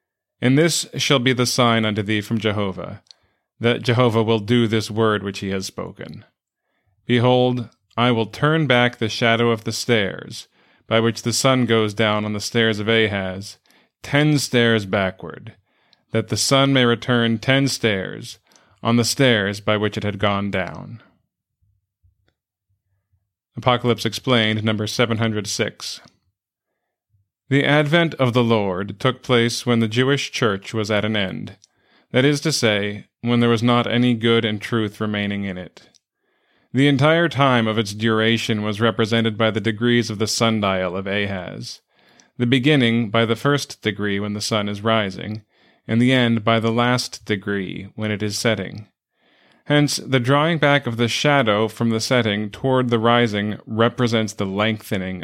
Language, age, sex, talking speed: English, 30-49, male, 160 wpm